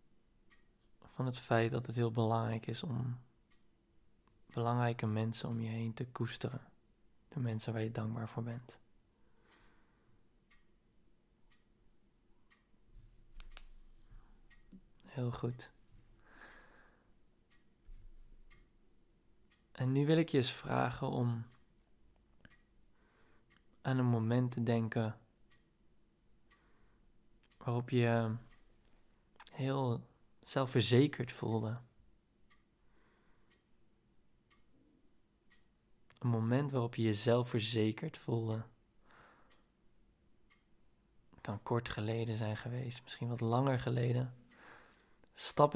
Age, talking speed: 20-39, 80 wpm